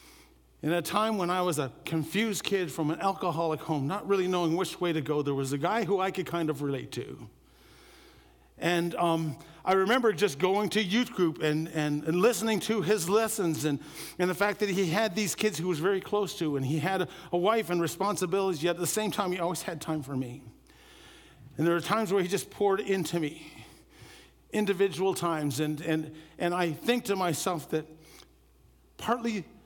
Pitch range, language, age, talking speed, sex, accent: 155-205 Hz, English, 50-69, 205 wpm, male, American